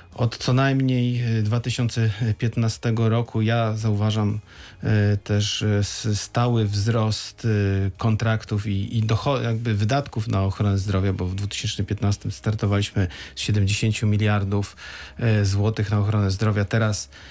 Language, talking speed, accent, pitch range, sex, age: Polish, 100 wpm, native, 105-115 Hz, male, 40-59